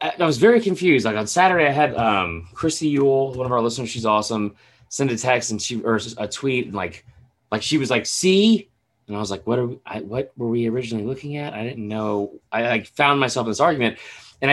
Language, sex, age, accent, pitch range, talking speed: English, male, 30-49, American, 110-150 Hz, 240 wpm